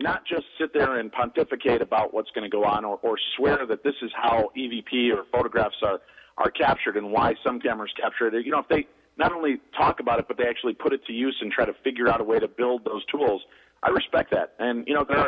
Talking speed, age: 255 wpm, 50-69